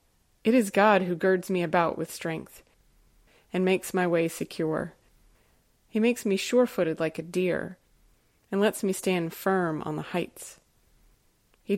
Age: 30-49